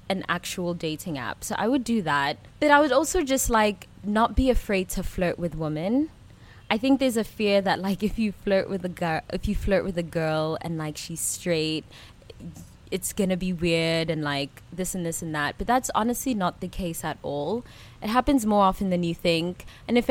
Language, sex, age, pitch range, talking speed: English, female, 20-39, 165-220 Hz, 220 wpm